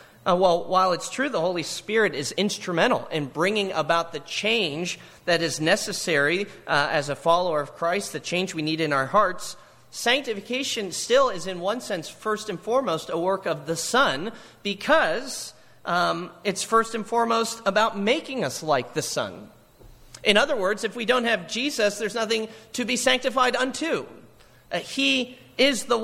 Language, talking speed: English, 175 wpm